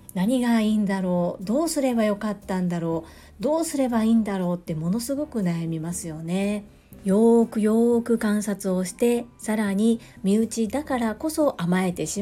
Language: Japanese